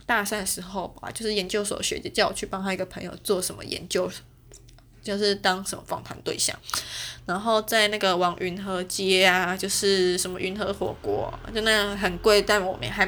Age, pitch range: 20-39, 185-225 Hz